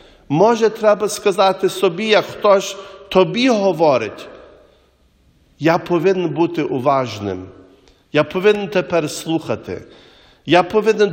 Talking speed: 100 wpm